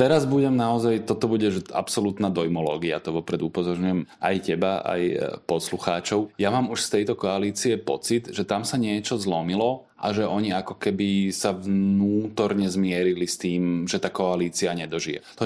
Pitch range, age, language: 95-110 Hz, 20-39, Slovak